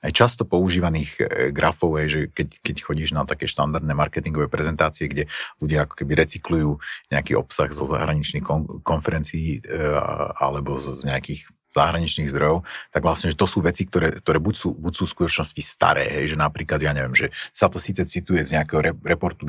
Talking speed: 175 wpm